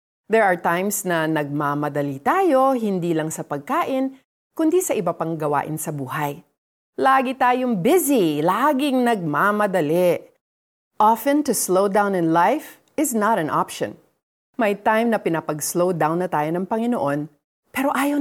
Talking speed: 140 wpm